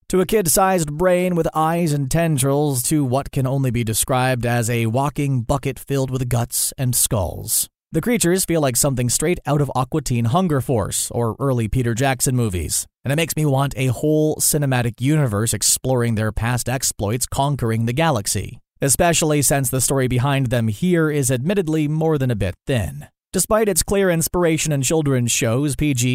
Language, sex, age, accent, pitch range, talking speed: English, male, 30-49, American, 120-155 Hz, 180 wpm